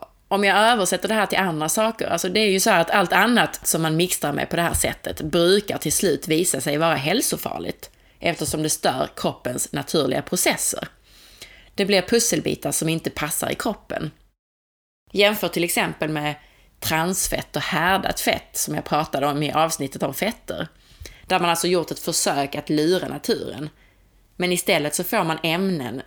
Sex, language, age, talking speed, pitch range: female, Swedish, 30-49, 175 wpm, 150-195 Hz